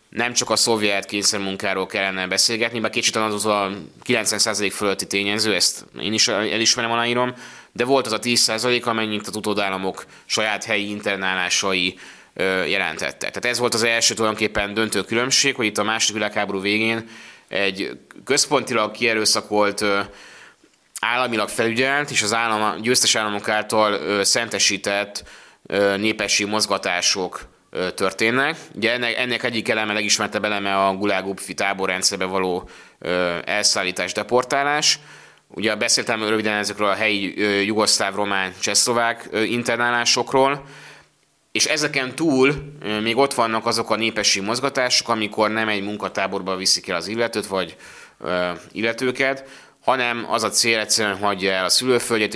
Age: 20-39